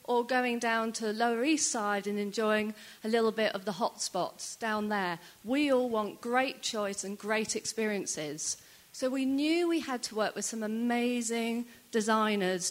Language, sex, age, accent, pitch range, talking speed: English, female, 40-59, British, 215-250 Hz, 180 wpm